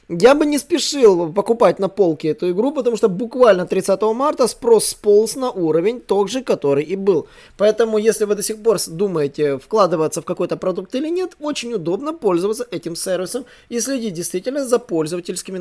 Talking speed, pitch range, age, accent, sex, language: 175 wpm, 170-220 Hz, 20-39, native, male, Russian